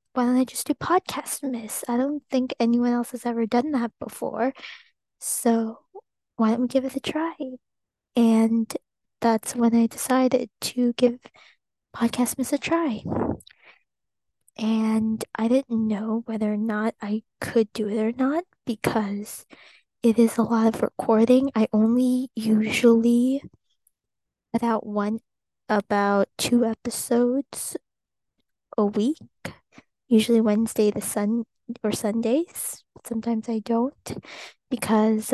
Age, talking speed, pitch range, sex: 20-39, 130 wpm, 220-255 Hz, female